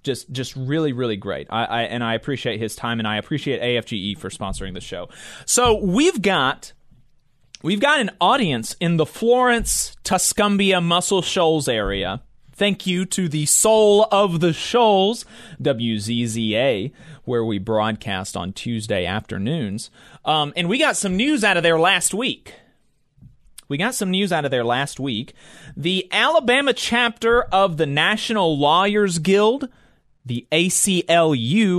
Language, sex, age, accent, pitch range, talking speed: English, male, 30-49, American, 130-205 Hz, 150 wpm